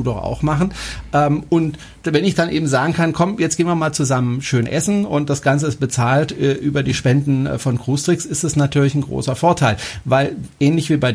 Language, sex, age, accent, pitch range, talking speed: German, male, 40-59, German, 135-180 Hz, 220 wpm